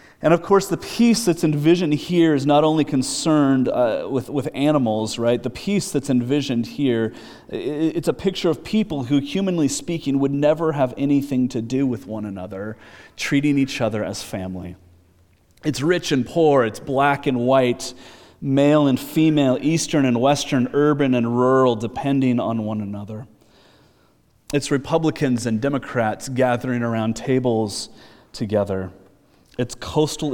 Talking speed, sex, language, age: 150 wpm, male, English, 30-49